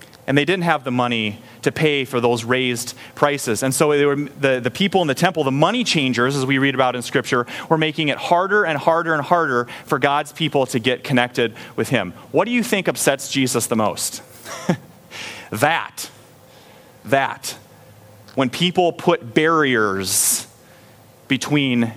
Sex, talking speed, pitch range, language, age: male, 165 wpm, 125-175 Hz, English, 30-49